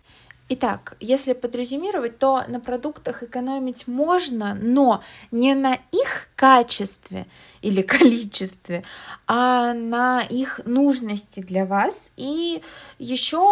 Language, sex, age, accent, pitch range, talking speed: Russian, female, 20-39, native, 225-265 Hz, 100 wpm